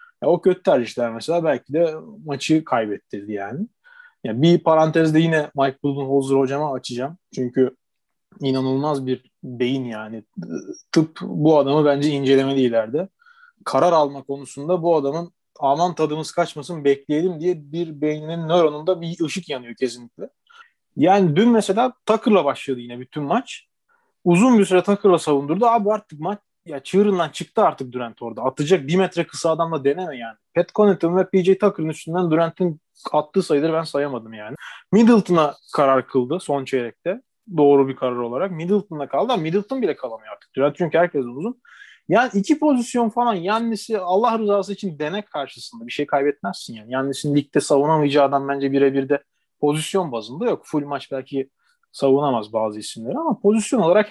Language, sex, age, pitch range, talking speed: Turkish, male, 30-49, 140-195 Hz, 155 wpm